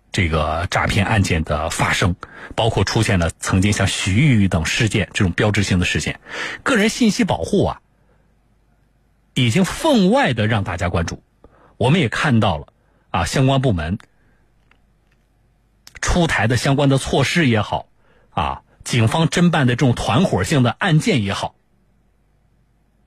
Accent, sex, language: native, male, Chinese